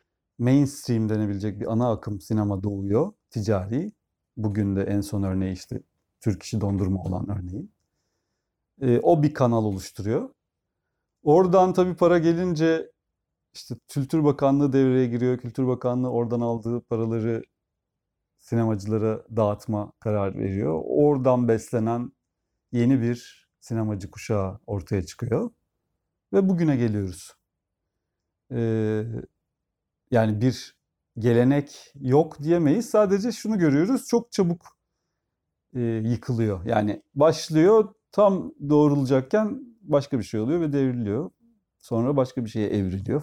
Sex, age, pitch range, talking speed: male, 40-59, 110-150 Hz, 110 wpm